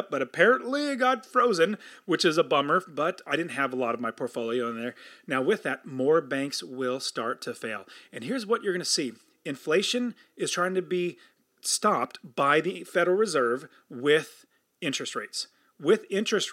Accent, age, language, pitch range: American, 30-49, English, 150-215 Hz